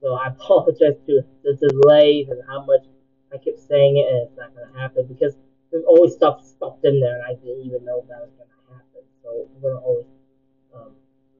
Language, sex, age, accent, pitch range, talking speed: English, male, 20-39, American, 135-145 Hz, 205 wpm